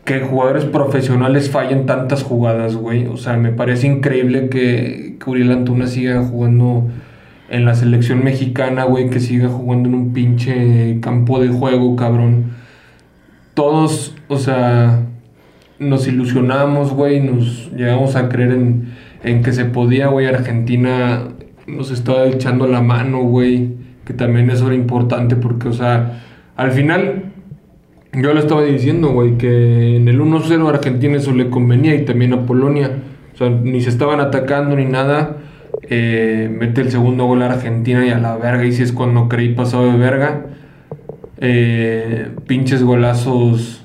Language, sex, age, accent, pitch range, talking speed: English, male, 20-39, Mexican, 120-135 Hz, 155 wpm